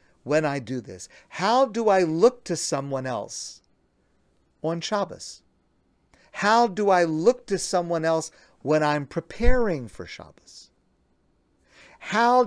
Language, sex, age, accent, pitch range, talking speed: English, male, 50-69, American, 120-190 Hz, 125 wpm